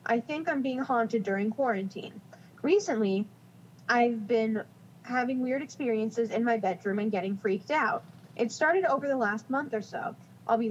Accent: American